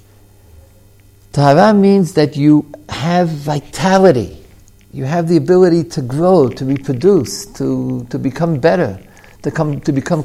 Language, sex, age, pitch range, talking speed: English, male, 50-69, 100-160 Hz, 130 wpm